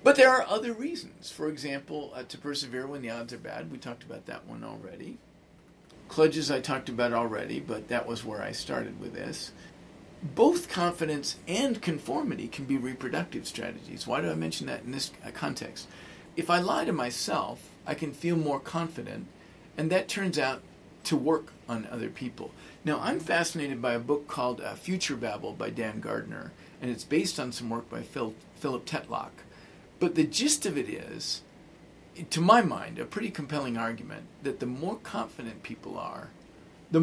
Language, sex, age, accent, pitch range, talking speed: English, male, 50-69, American, 125-175 Hz, 180 wpm